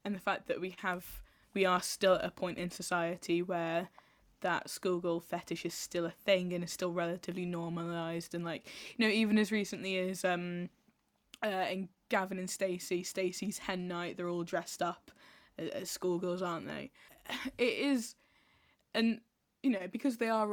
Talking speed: 175 wpm